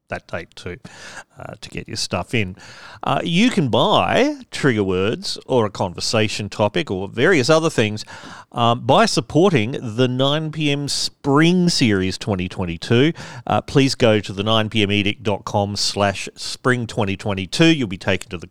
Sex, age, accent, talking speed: male, 40-59, Australian, 150 wpm